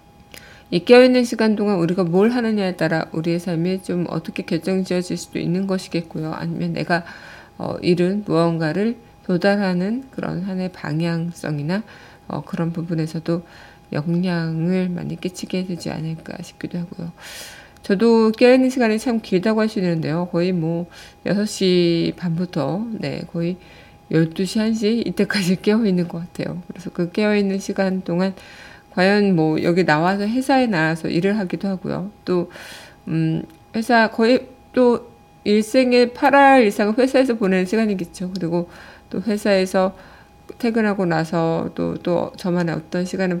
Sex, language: female, Korean